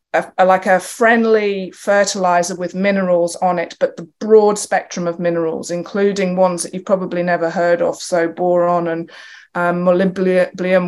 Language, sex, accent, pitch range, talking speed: English, female, British, 175-215 Hz, 150 wpm